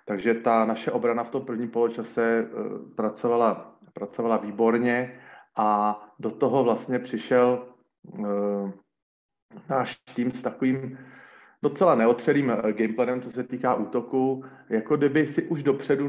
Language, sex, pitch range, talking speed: Slovak, male, 115-130 Hz, 120 wpm